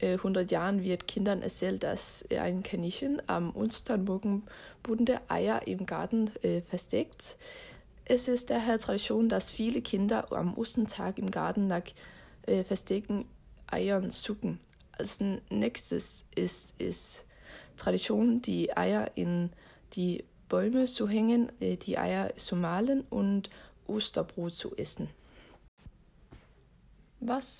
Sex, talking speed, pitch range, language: female, 115 wpm, 190-230 Hz, Danish